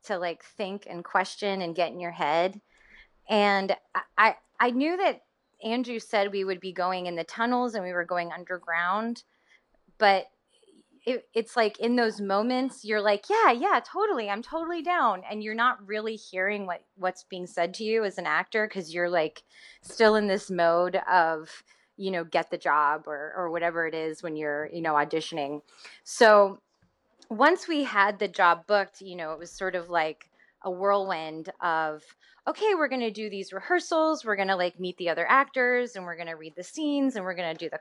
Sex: female